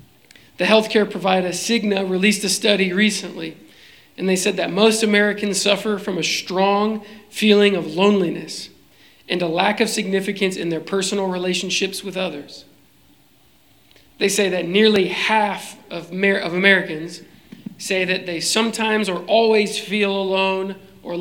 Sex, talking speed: male, 140 wpm